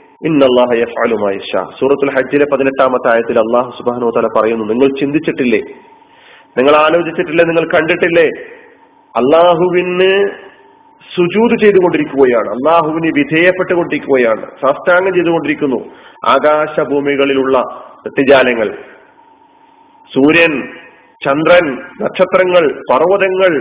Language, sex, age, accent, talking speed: Malayalam, male, 40-59, native, 50 wpm